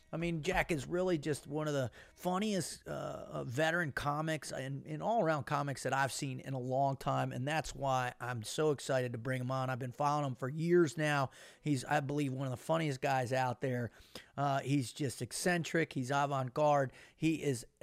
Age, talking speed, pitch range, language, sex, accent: 30-49, 200 wpm, 130-155 Hz, English, male, American